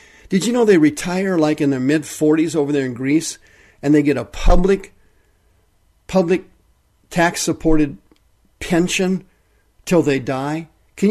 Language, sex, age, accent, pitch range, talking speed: English, male, 50-69, American, 140-165 Hz, 145 wpm